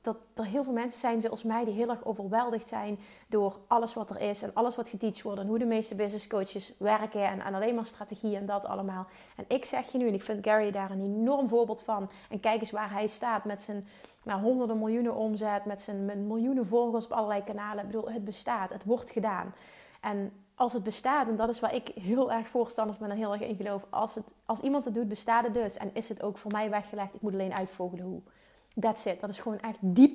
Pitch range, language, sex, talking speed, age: 205-235 Hz, Dutch, female, 250 wpm, 30-49